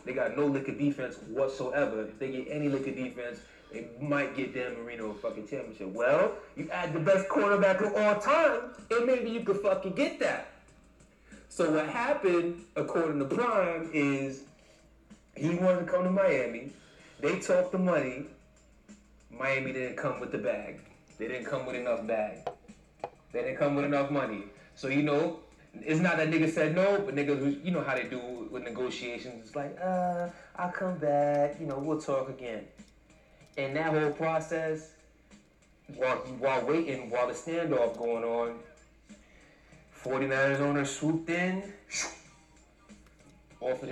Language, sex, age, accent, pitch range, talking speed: English, male, 30-49, American, 130-170 Hz, 165 wpm